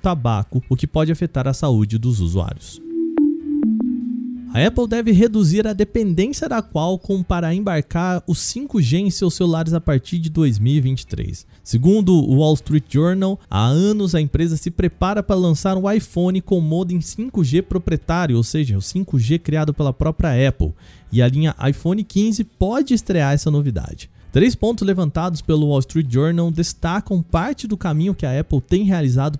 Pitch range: 135-185 Hz